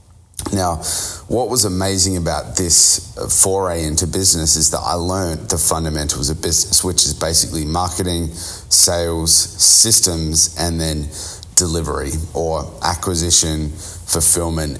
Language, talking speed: English, 120 wpm